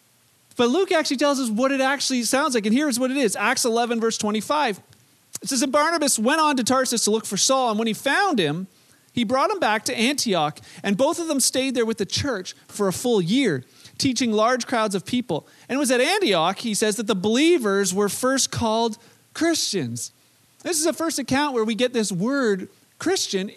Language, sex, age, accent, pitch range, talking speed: English, male, 40-59, American, 195-260 Hz, 215 wpm